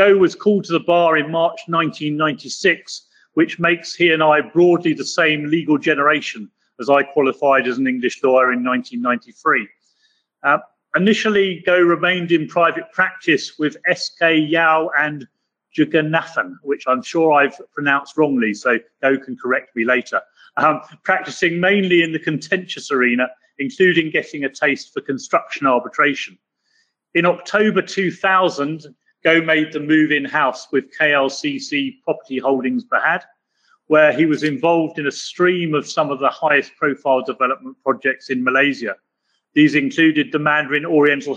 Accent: British